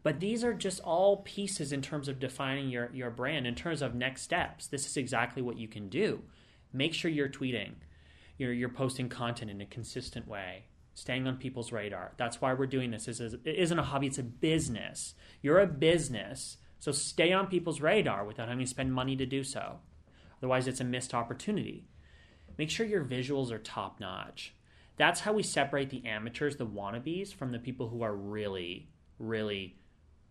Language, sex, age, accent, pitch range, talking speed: English, male, 30-49, American, 110-145 Hz, 195 wpm